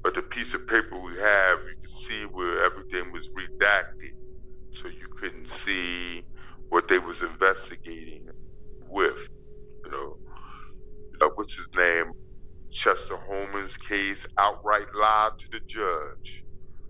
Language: English